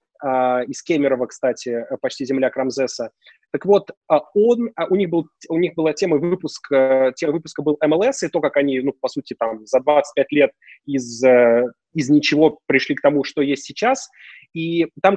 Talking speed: 170 wpm